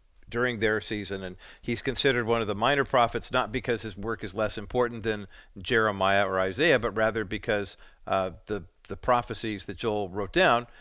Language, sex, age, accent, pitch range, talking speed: English, male, 50-69, American, 105-125 Hz, 185 wpm